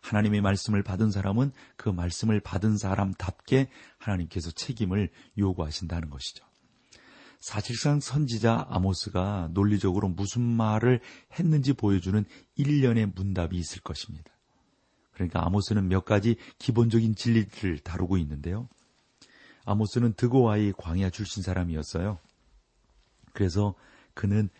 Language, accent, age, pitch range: Korean, native, 40-59, 90-115 Hz